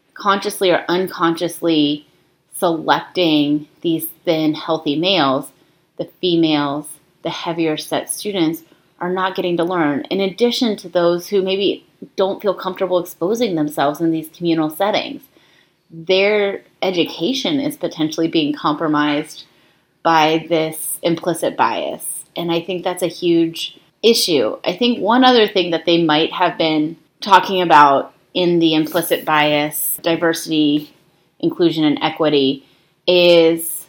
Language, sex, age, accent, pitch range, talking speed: English, female, 30-49, American, 150-185 Hz, 125 wpm